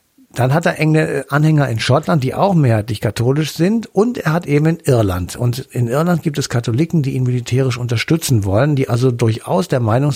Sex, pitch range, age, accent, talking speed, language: male, 120-160 Hz, 60-79, German, 195 wpm, German